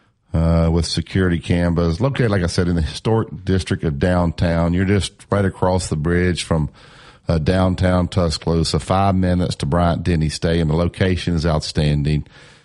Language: English